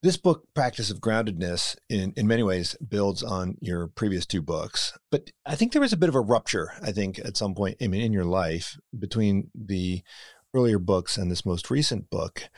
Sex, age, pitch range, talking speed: male, 40-59, 95-120 Hz, 210 wpm